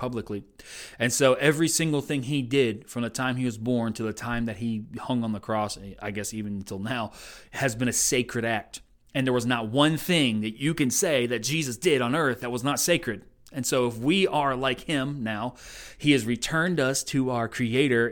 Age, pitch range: 30-49, 110-140 Hz